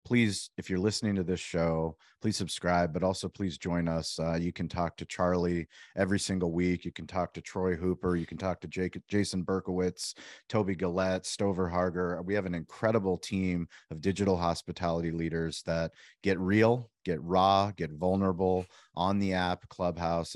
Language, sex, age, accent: English, male, 30-49, American